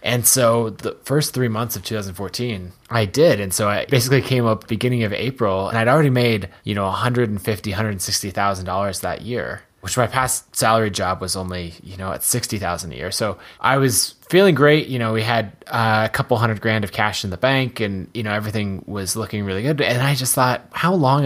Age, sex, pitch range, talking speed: 20-39, male, 105-130 Hz, 210 wpm